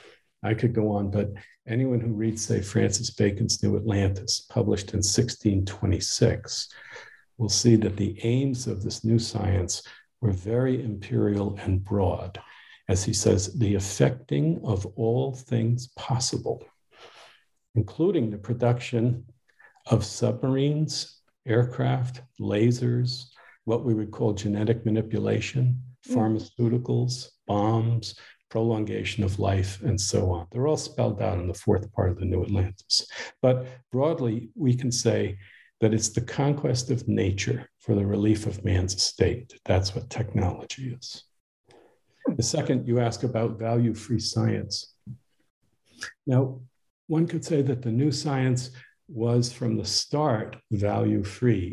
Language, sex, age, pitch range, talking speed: English, male, 50-69, 105-125 Hz, 130 wpm